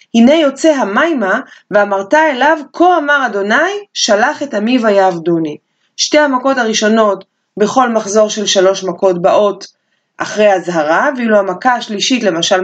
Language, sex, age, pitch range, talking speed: Hebrew, female, 20-39, 195-280 Hz, 135 wpm